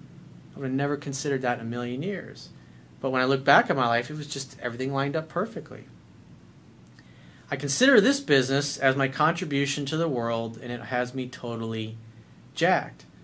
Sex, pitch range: male, 125-160 Hz